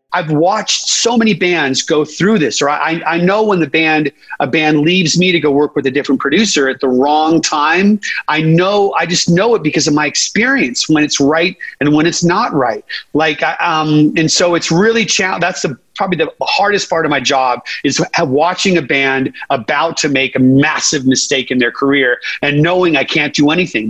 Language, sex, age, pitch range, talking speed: English, male, 40-59, 145-190 Hz, 210 wpm